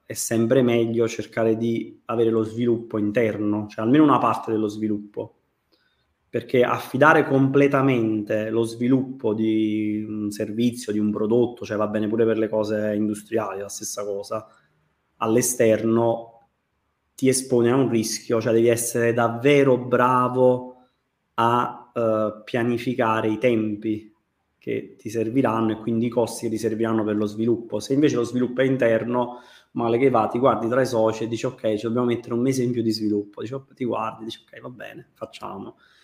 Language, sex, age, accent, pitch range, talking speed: Italian, male, 20-39, native, 110-125 Hz, 170 wpm